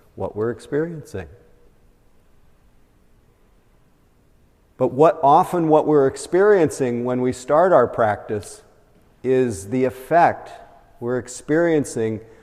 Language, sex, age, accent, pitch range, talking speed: English, male, 50-69, American, 115-145 Hz, 90 wpm